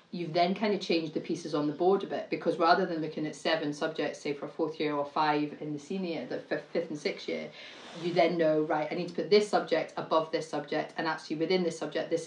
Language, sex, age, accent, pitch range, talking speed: English, female, 30-49, British, 155-175 Hz, 260 wpm